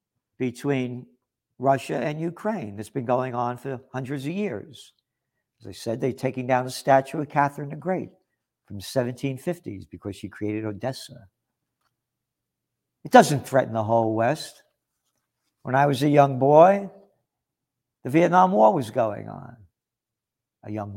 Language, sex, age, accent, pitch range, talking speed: English, male, 60-79, American, 120-170 Hz, 145 wpm